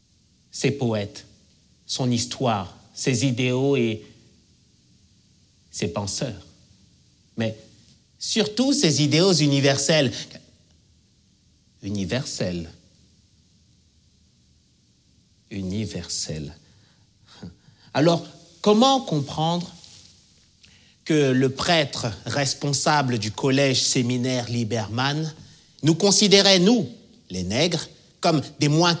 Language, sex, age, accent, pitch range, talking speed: French, male, 50-69, French, 95-145 Hz, 70 wpm